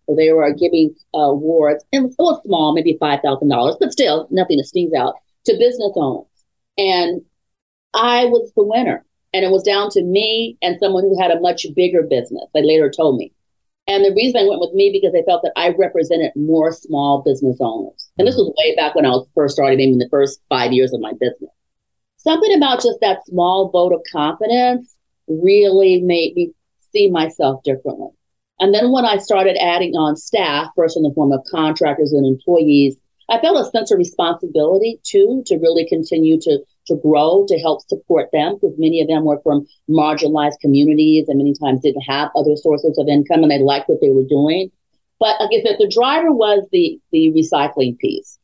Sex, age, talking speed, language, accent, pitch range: female, 40-59, 200 wpm, English, American, 150-230 Hz